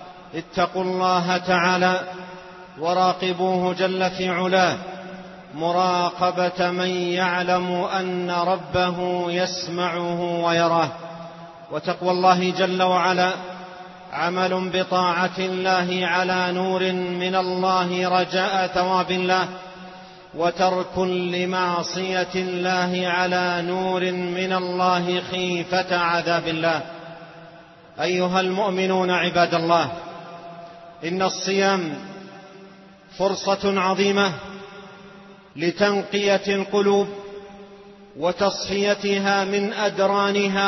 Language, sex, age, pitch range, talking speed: Arabic, male, 40-59, 180-200 Hz, 75 wpm